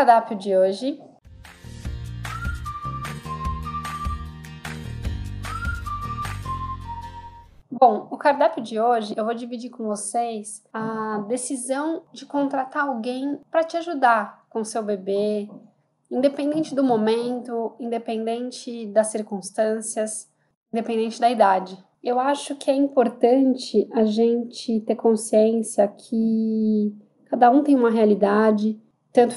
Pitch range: 210-250 Hz